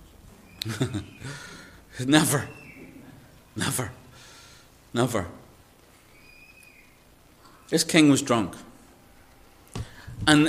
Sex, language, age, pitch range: male, English, 50-69, 105-150 Hz